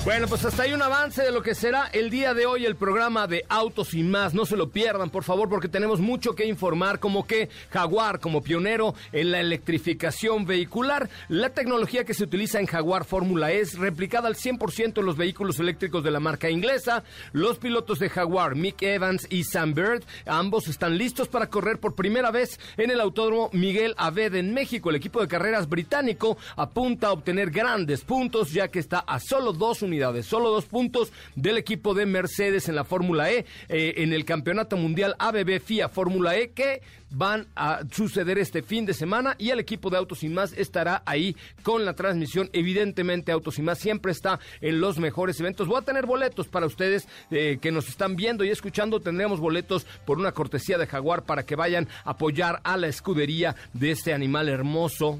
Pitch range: 165-220 Hz